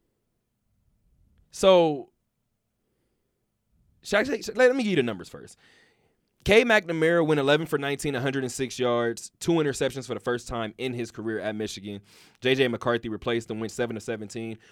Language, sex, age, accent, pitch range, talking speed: English, male, 20-39, American, 105-140 Hz, 150 wpm